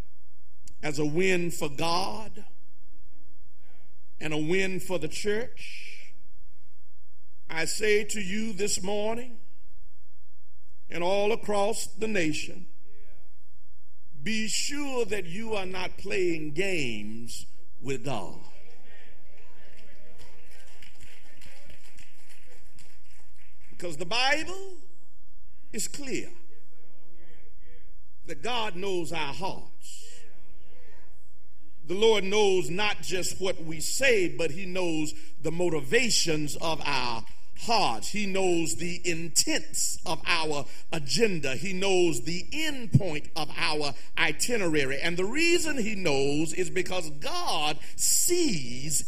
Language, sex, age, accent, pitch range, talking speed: English, male, 50-69, American, 140-200 Hz, 100 wpm